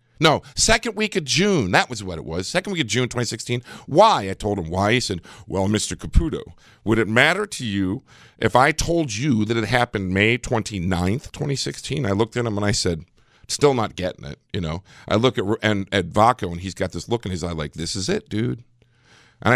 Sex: male